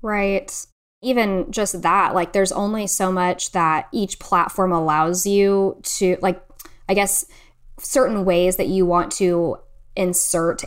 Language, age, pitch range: English, 10-29, 175-200 Hz